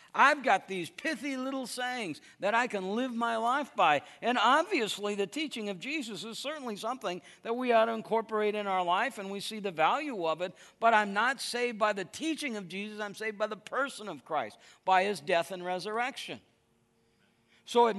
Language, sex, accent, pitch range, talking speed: English, male, American, 180-235 Hz, 200 wpm